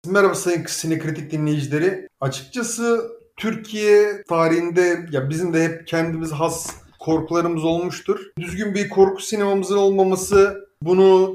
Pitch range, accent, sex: 160-195 Hz, native, male